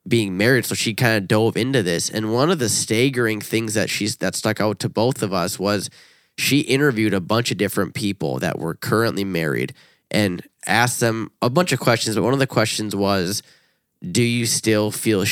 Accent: American